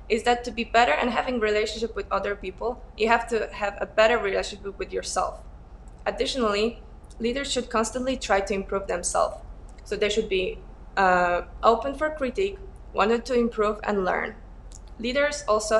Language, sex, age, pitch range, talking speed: English, female, 20-39, 200-235 Hz, 165 wpm